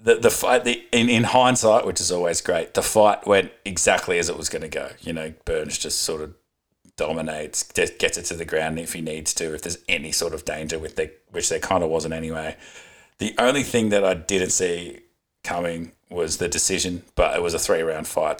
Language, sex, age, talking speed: English, male, 30-49, 220 wpm